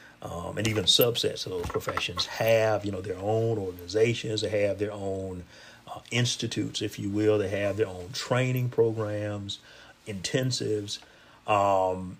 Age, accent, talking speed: 40-59, American, 150 wpm